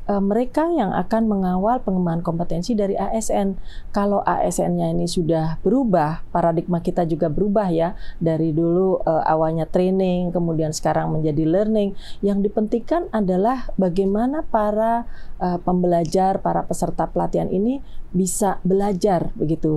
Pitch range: 175-225 Hz